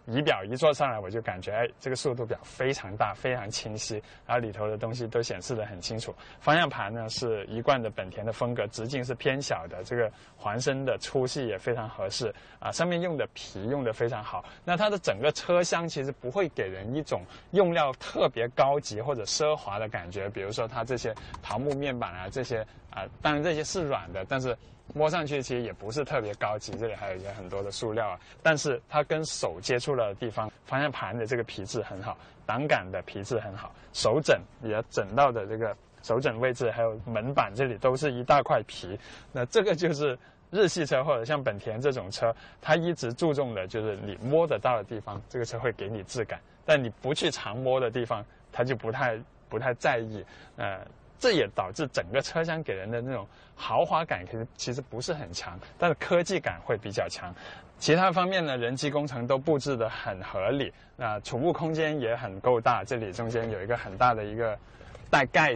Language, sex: Chinese, male